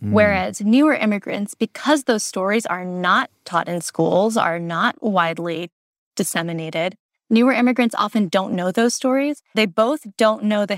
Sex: female